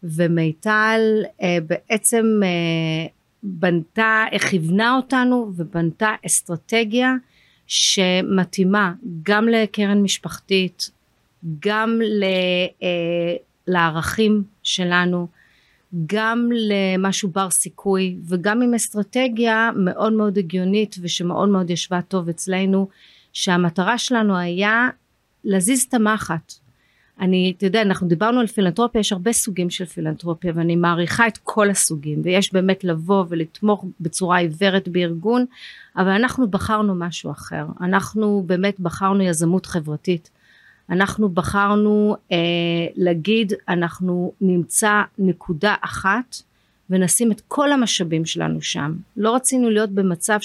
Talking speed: 110 wpm